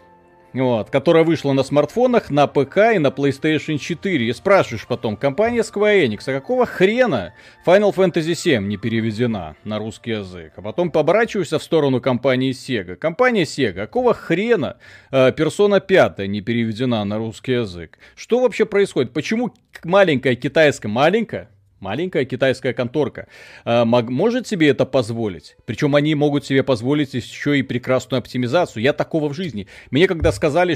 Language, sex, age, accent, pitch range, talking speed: Russian, male, 30-49, native, 125-180 Hz, 150 wpm